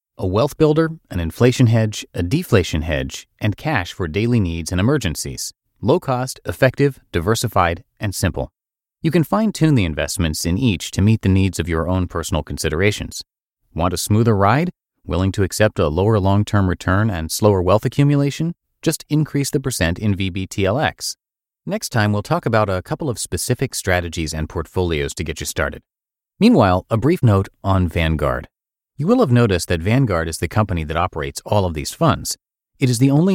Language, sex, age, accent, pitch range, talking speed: English, male, 30-49, American, 85-125 Hz, 180 wpm